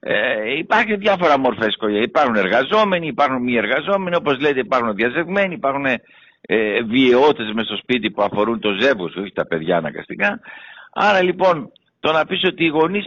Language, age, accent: Greek, 60-79, Spanish